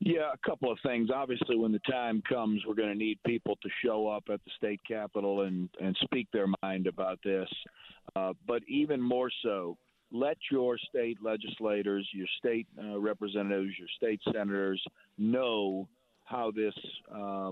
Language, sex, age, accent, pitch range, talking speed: English, male, 50-69, American, 100-120 Hz, 165 wpm